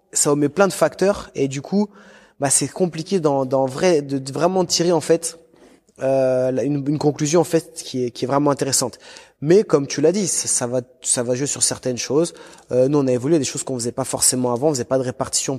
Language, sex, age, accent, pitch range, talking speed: French, male, 20-39, French, 135-165 Hz, 240 wpm